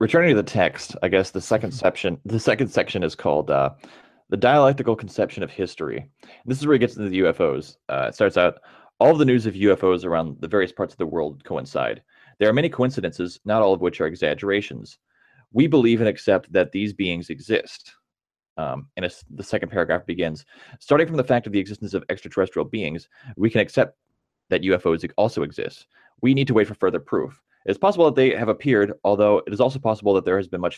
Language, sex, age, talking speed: English, male, 20-39, 215 wpm